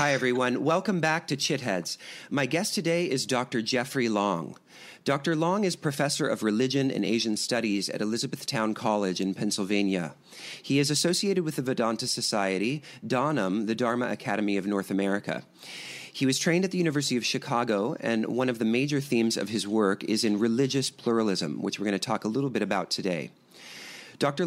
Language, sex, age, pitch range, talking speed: English, male, 40-59, 105-140 Hz, 180 wpm